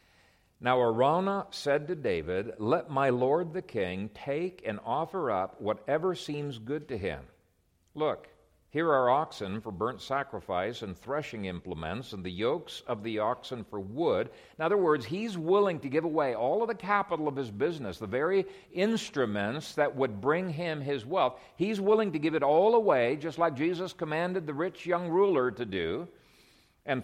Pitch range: 105-160 Hz